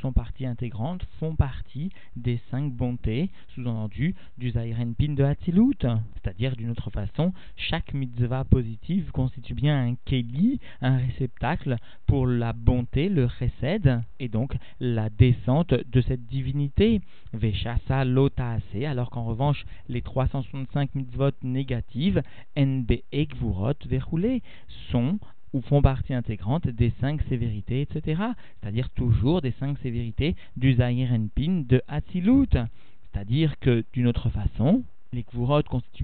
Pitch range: 115-140 Hz